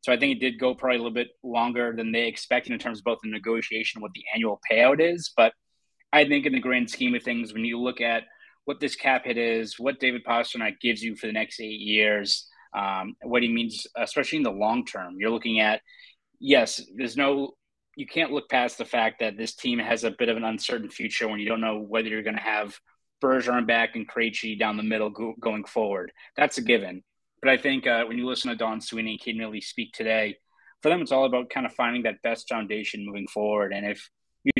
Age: 20-39